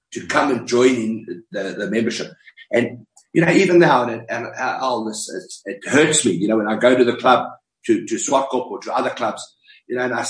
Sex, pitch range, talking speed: male, 120-175 Hz, 240 wpm